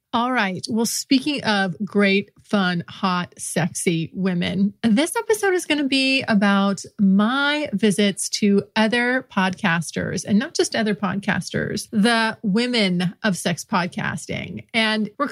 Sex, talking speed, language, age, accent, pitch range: female, 135 wpm, English, 30-49, American, 190-230 Hz